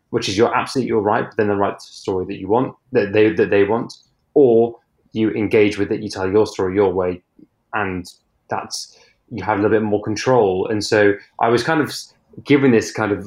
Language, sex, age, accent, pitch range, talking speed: English, male, 20-39, British, 100-115 Hz, 220 wpm